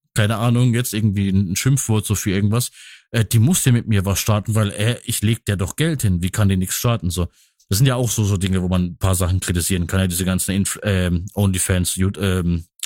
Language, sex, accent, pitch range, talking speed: German, male, German, 100-120 Hz, 245 wpm